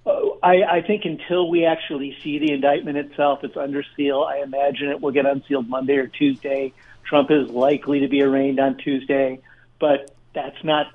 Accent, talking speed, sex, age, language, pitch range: American, 180 wpm, male, 50-69, English, 140-155 Hz